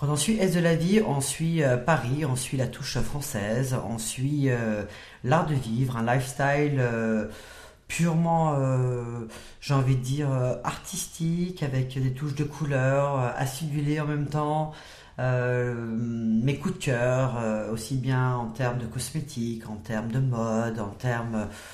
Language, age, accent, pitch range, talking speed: French, 40-59, French, 115-150 Hz, 145 wpm